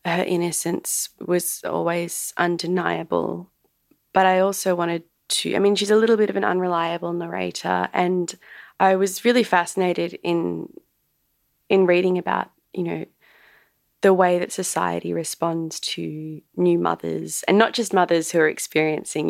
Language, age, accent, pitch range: English, 20-39, Australian, 155-190 Hz